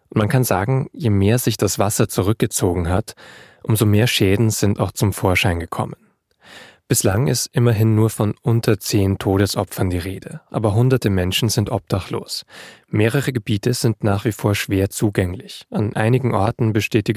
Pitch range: 100-120 Hz